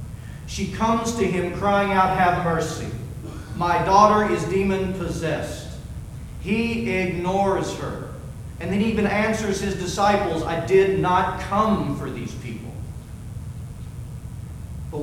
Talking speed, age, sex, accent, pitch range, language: 115 wpm, 40-59, male, American, 135-175 Hz, English